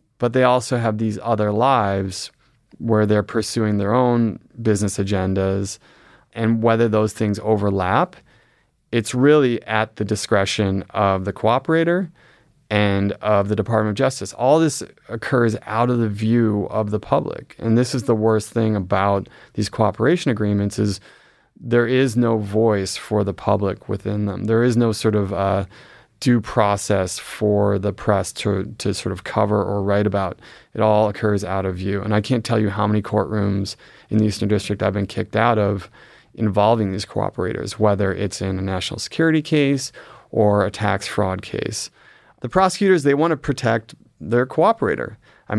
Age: 30-49